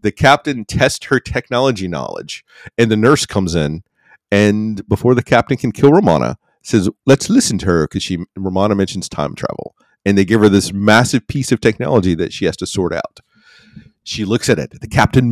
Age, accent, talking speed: 40-59, American, 195 wpm